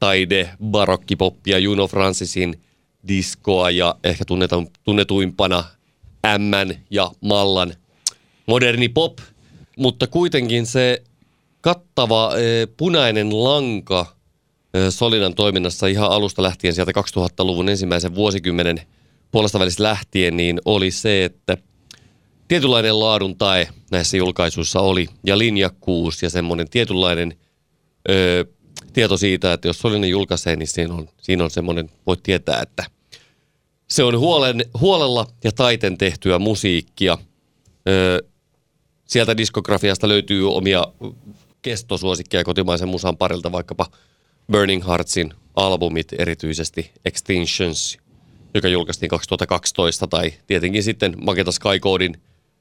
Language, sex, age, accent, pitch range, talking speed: Finnish, male, 30-49, native, 90-110 Hz, 105 wpm